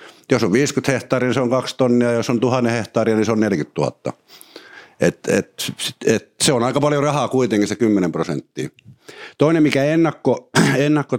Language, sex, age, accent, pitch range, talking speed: Finnish, male, 60-79, native, 95-120 Hz, 165 wpm